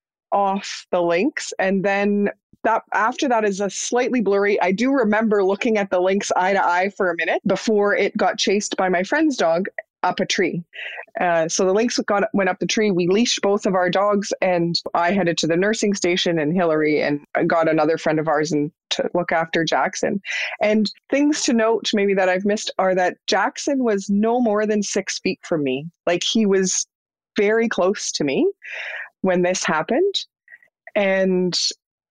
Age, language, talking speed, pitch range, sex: 30-49, English, 185 wpm, 175-215 Hz, female